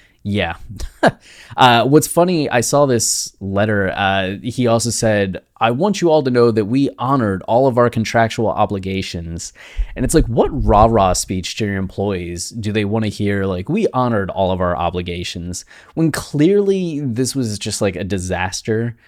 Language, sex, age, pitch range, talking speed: English, male, 20-39, 95-120 Hz, 175 wpm